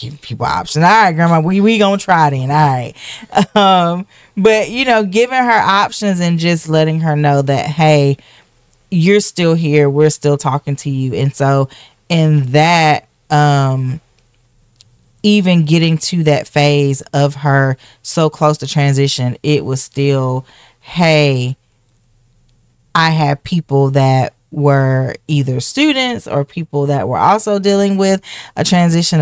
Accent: American